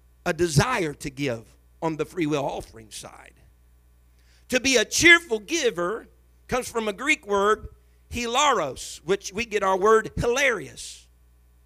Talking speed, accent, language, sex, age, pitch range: 140 wpm, American, English, male, 50-69, 140-210 Hz